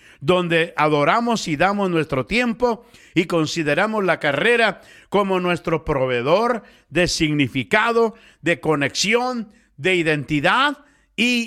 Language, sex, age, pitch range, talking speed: Spanish, male, 50-69, 150-220 Hz, 105 wpm